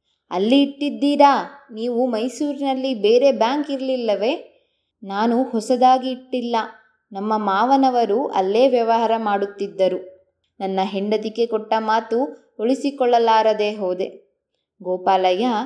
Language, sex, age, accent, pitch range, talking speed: Kannada, female, 20-39, native, 210-280 Hz, 85 wpm